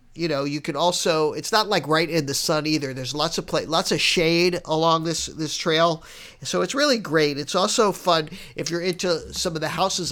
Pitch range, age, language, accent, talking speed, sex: 145-180 Hz, 50-69, English, American, 225 wpm, male